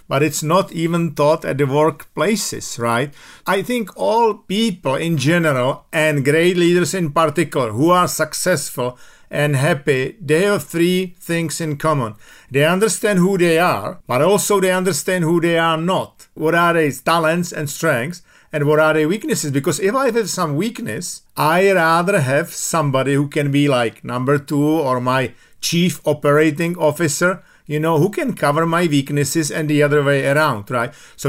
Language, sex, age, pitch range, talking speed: English, male, 50-69, 145-175 Hz, 175 wpm